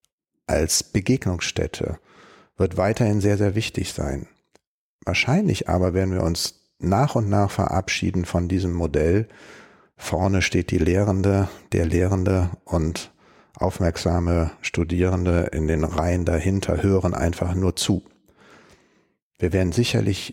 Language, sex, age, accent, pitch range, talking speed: German, male, 60-79, German, 90-105 Hz, 120 wpm